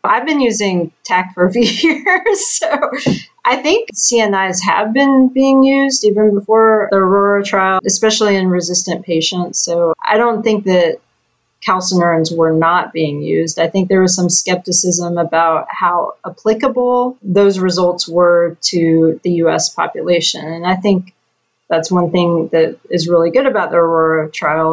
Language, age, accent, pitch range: English, 30-49, American, 165-210 Hz